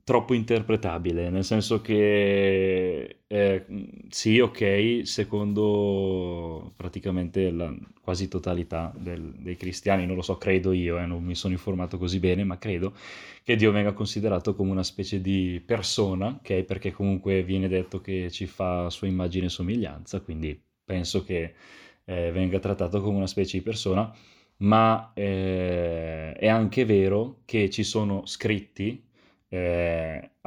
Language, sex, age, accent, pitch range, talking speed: Italian, male, 20-39, native, 90-105 Hz, 140 wpm